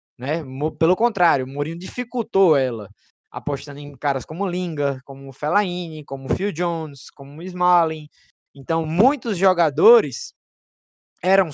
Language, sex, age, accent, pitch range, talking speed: Portuguese, male, 20-39, Brazilian, 150-205 Hz, 140 wpm